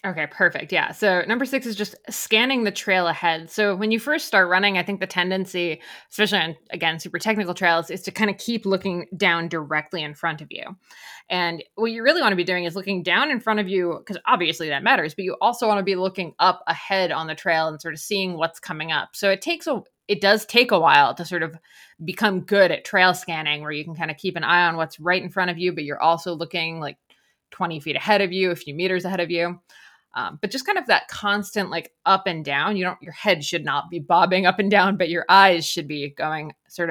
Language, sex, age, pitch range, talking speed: English, female, 20-39, 165-205 Hz, 250 wpm